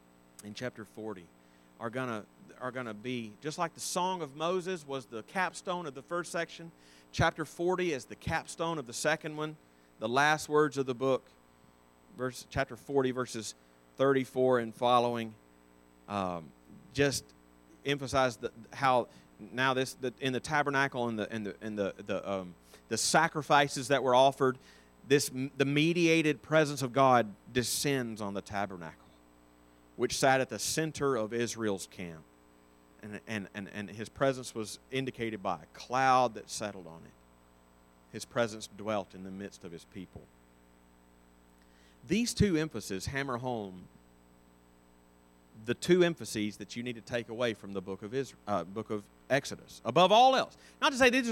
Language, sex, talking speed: English, male, 165 wpm